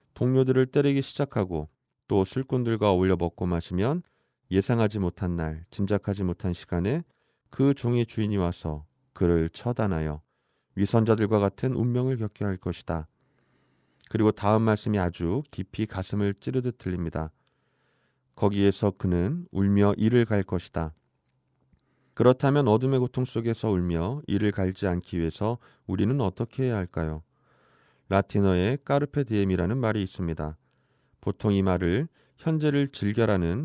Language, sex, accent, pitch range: Korean, male, native, 90-130 Hz